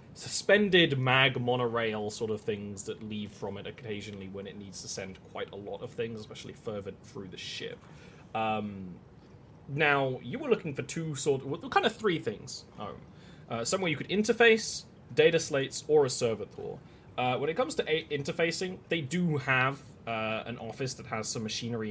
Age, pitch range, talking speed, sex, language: 20-39, 110-165 Hz, 185 wpm, male, English